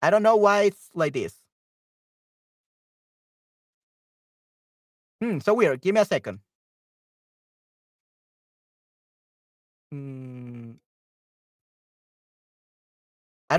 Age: 40-59